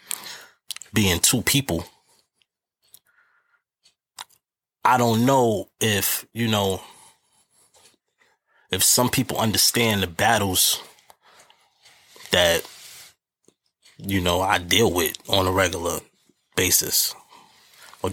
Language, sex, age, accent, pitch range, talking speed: English, male, 20-39, American, 90-100 Hz, 85 wpm